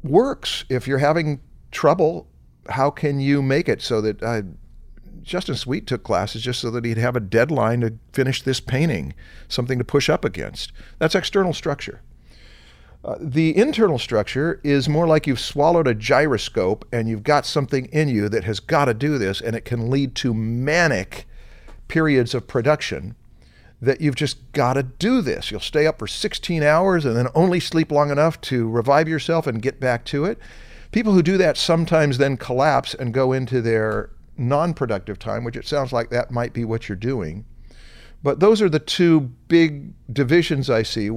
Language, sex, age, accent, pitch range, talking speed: English, male, 50-69, American, 115-150 Hz, 185 wpm